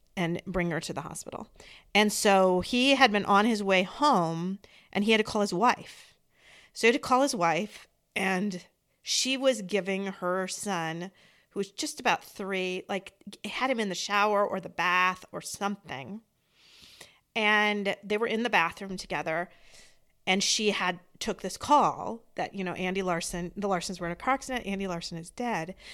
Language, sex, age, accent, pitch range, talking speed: English, female, 40-59, American, 180-235 Hz, 185 wpm